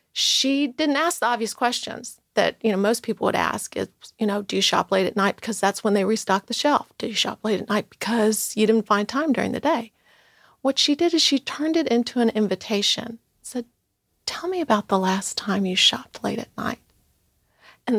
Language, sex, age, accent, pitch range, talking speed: English, female, 40-59, American, 220-285 Hz, 220 wpm